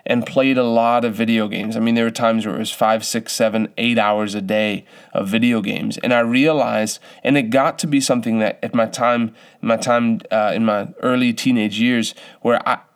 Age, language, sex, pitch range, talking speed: 20-39, English, male, 110-135 Hz, 220 wpm